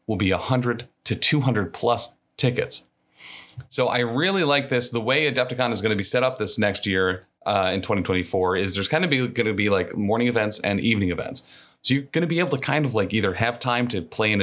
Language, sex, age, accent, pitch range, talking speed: English, male, 30-49, American, 95-125 Hz, 235 wpm